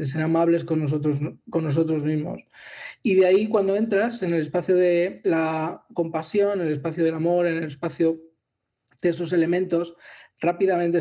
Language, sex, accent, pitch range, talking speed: English, male, Spanish, 150-170 Hz, 170 wpm